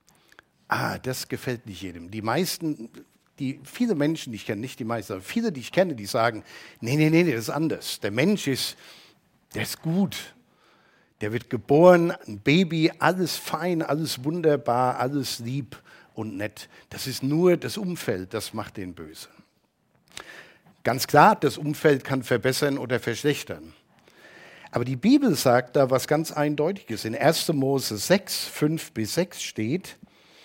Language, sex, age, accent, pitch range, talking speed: German, male, 50-69, German, 120-160 Hz, 160 wpm